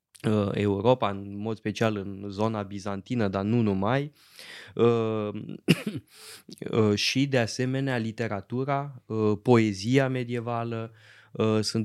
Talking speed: 85 wpm